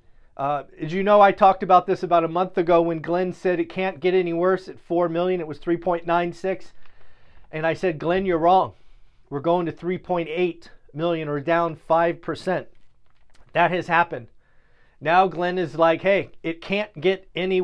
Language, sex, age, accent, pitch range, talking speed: English, male, 40-59, American, 150-185 Hz, 175 wpm